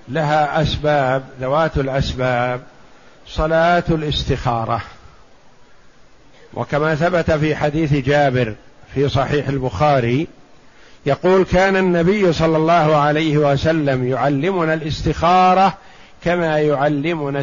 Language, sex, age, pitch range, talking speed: Arabic, male, 50-69, 145-180 Hz, 85 wpm